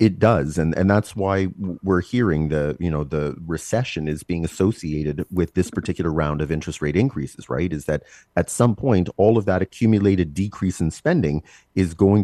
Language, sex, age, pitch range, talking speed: English, male, 30-49, 80-105 Hz, 190 wpm